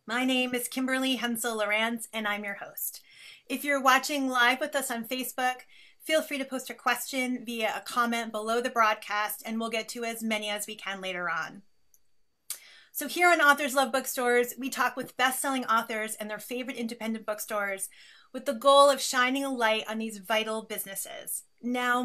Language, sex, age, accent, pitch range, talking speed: English, female, 30-49, American, 225-265 Hz, 190 wpm